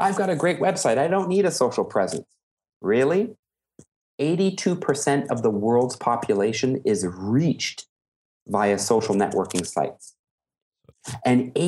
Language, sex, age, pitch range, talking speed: English, male, 40-59, 120-170 Hz, 125 wpm